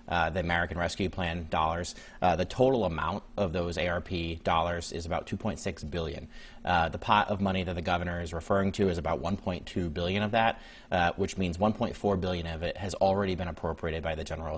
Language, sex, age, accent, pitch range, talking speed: English, male, 30-49, American, 90-105 Hz, 225 wpm